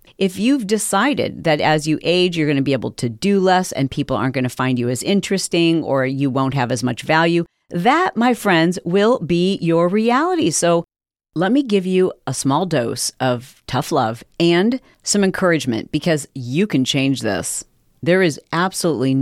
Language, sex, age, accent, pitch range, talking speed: English, female, 40-59, American, 140-185 Hz, 185 wpm